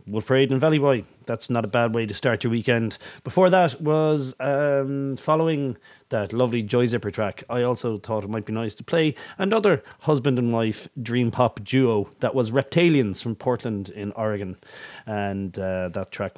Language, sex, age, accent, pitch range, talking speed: English, male, 30-49, Irish, 105-140 Hz, 190 wpm